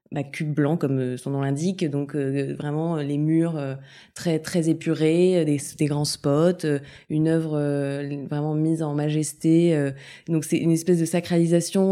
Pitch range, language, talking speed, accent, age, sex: 145-175 Hz, French, 180 wpm, French, 20-39, female